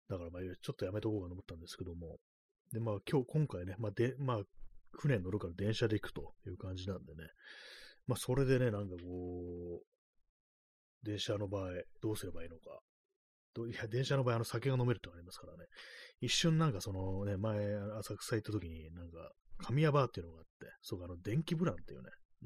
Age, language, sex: 30-49, Japanese, male